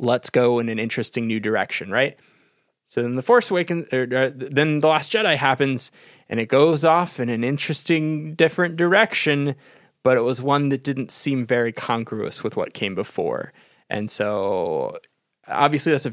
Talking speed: 165 wpm